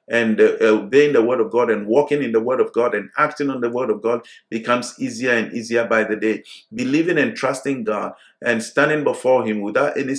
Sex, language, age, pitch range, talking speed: male, English, 50-69, 110-140 Hz, 225 wpm